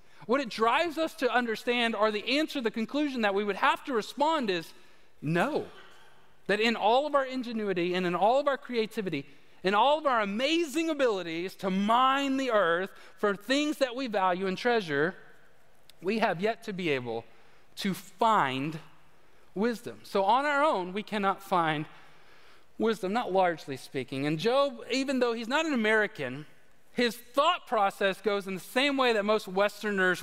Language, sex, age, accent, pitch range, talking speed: English, male, 40-59, American, 180-250 Hz, 175 wpm